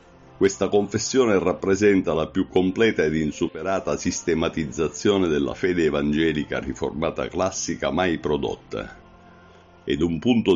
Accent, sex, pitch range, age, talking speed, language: native, male, 80-105 Hz, 50-69, 110 wpm, Italian